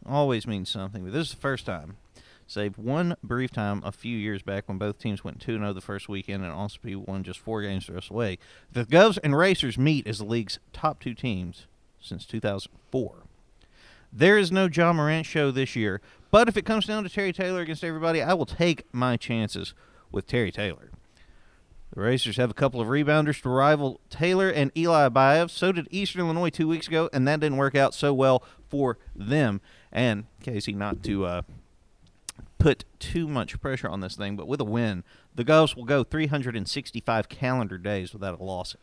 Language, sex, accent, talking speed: English, male, American, 200 wpm